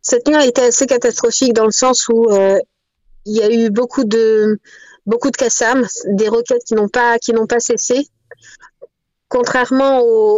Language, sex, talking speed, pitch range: Italian, female, 180 wpm, 230-260 Hz